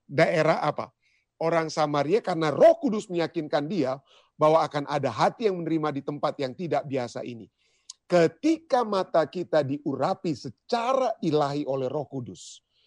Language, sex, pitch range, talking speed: Indonesian, male, 140-185 Hz, 140 wpm